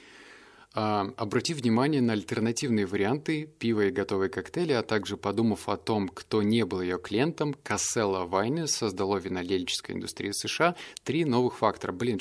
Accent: native